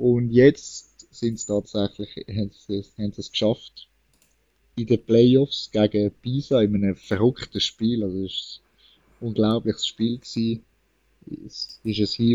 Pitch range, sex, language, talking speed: 105-120 Hz, male, German, 150 wpm